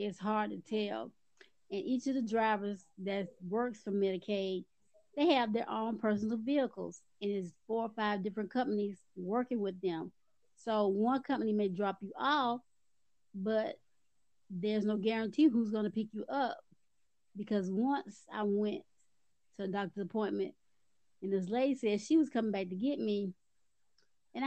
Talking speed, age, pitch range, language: 160 wpm, 20-39, 200-265 Hz, English